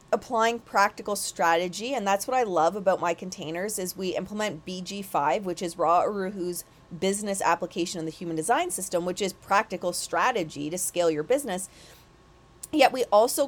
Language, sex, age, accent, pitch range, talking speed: English, female, 30-49, American, 175-230 Hz, 165 wpm